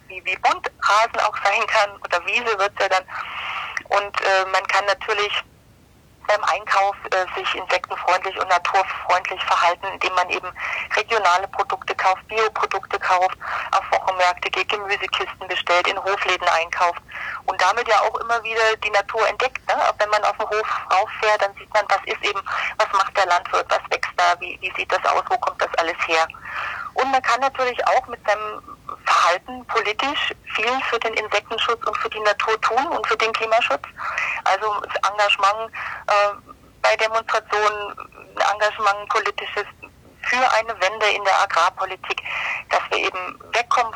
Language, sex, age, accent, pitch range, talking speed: German, female, 30-49, German, 190-220 Hz, 160 wpm